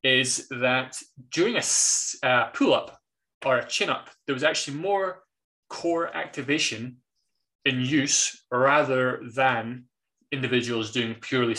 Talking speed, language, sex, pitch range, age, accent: 115 wpm, English, male, 120-140 Hz, 20-39, British